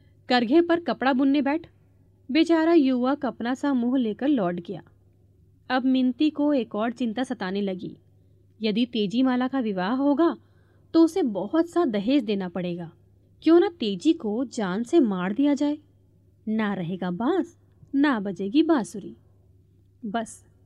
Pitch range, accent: 205-285 Hz, native